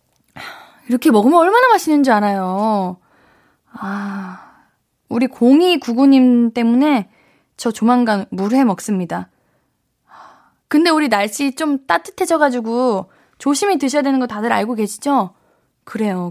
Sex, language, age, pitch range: female, Korean, 20-39, 215-300 Hz